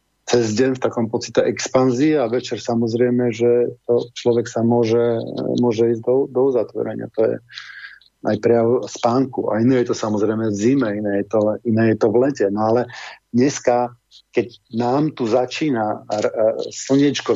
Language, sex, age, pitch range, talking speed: Slovak, male, 50-69, 115-125 Hz, 160 wpm